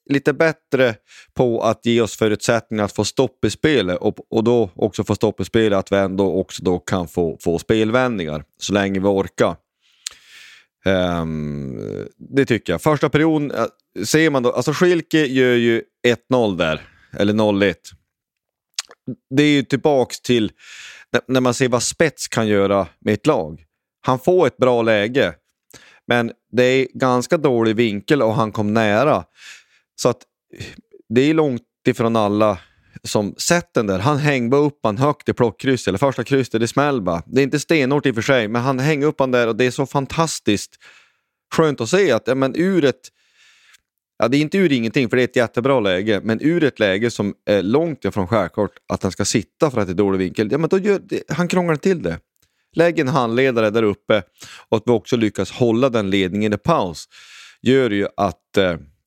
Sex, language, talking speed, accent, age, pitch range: male, Swedish, 190 wpm, native, 30-49, 105-140 Hz